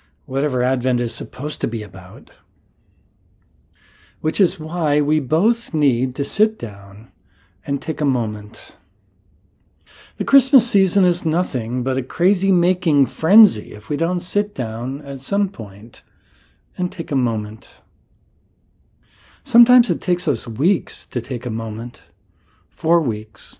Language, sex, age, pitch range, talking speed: English, male, 40-59, 115-160 Hz, 130 wpm